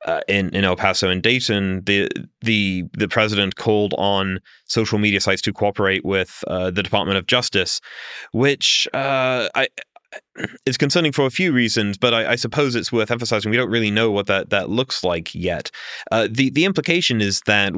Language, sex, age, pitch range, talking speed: English, male, 30-49, 100-125 Hz, 190 wpm